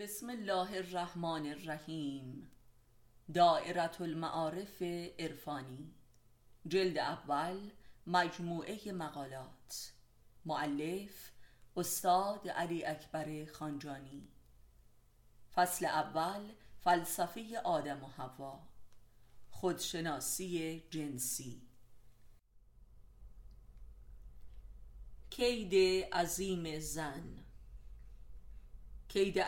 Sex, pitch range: female, 145-190 Hz